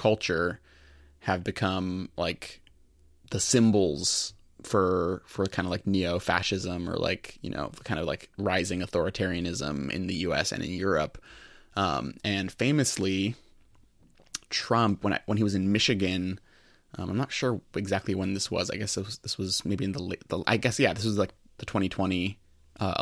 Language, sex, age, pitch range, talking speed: English, male, 20-39, 95-140 Hz, 165 wpm